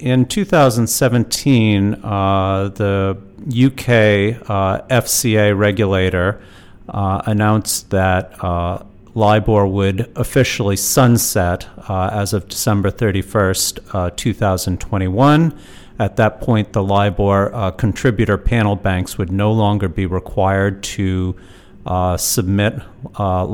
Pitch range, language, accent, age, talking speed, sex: 95-115 Hz, English, American, 40-59, 105 wpm, male